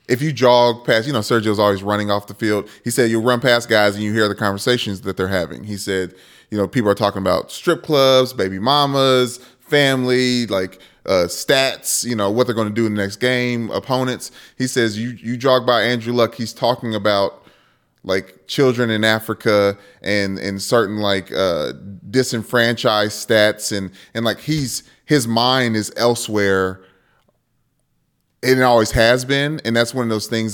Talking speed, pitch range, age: 185 wpm, 100-125 Hz, 20-39